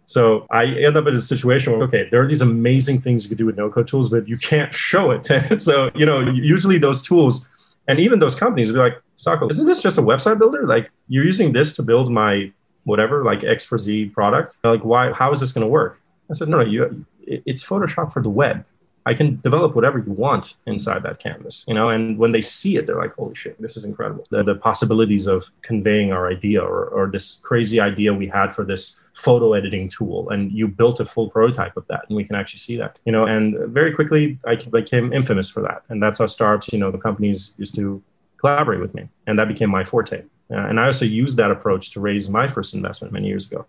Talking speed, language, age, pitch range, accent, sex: 240 wpm, English, 30-49, 105-130 Hz, American, male